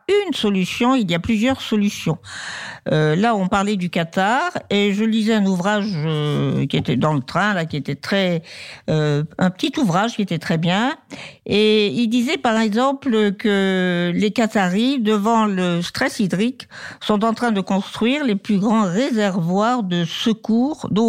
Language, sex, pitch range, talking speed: French, female, 170-225 Hz, 170 wpm